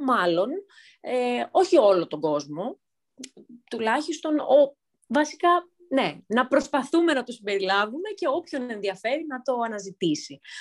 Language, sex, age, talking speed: Greek, female, 30-49, 120 wpm